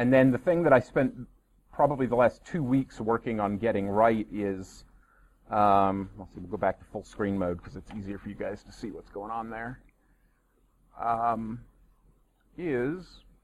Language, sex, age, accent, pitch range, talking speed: English, male, 40-59, American, 95-130 Hz, 185 wpm